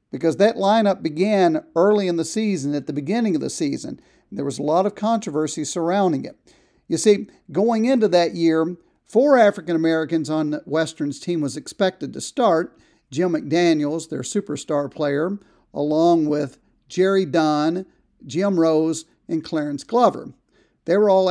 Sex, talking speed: male, 150 wpm